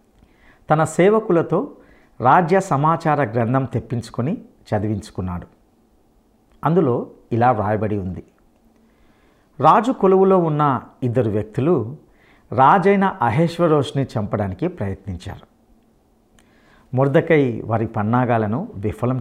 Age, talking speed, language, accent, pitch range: 50-69, 80 wpm, English, Indian, 115-165 Hz